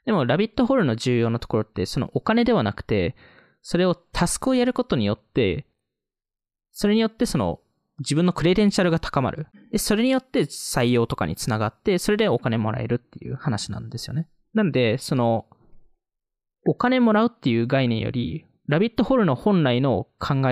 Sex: male